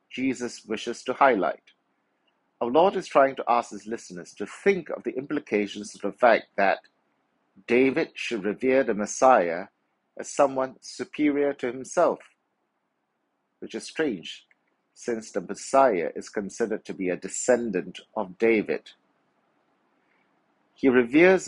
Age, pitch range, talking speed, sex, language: 60-79, 105-135 Hz, 130 wpm, male, English